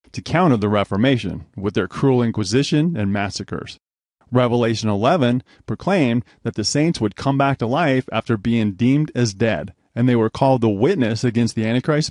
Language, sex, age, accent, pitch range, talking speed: English, male, 30-49, American, 110-135 Hz, 175 wpm